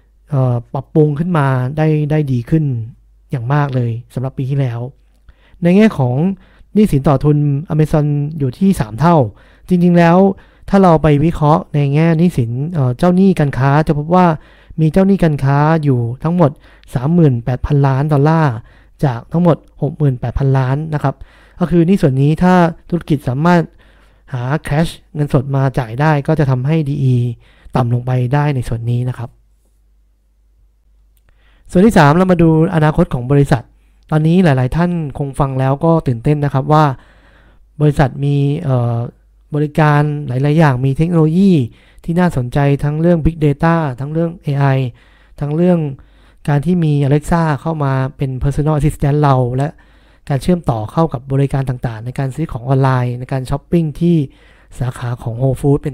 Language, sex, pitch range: Thai, male, 130-165 Hz